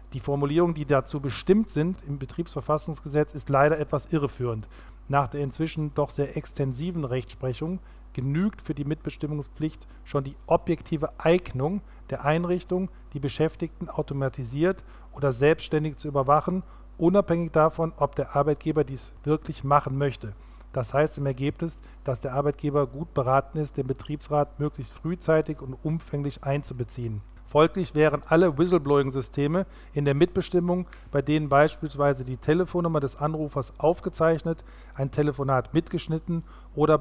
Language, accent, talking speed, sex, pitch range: German, German, 130 wpm, male, 135-160 Hz